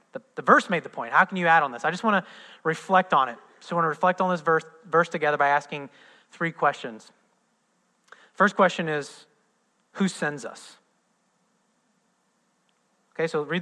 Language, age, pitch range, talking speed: English, 30-49, 155-220 Hz, 180 wpm